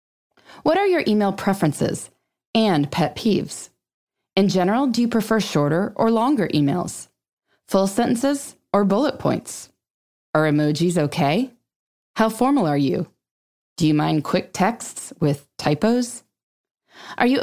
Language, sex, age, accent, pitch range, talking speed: English, female, 20-39, American, 155-240 Hz, 130 wpm